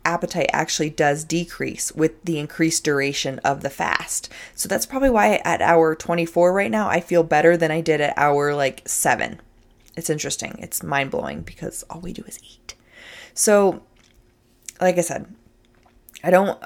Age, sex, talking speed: 20-39, female, 170 wpm